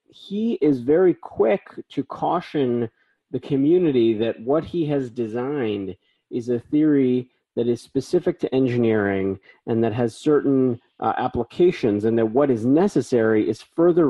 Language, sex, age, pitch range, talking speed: English, male, 40-59, 115-145 Hz, 145 wpm